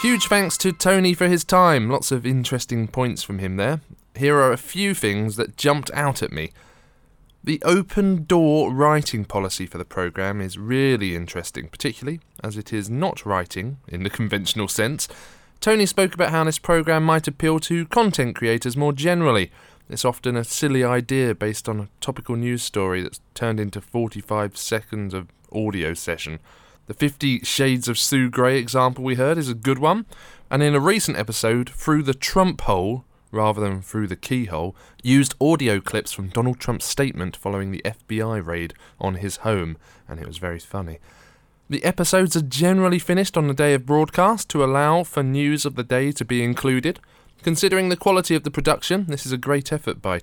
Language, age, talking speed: English, 20-39, 185 wpm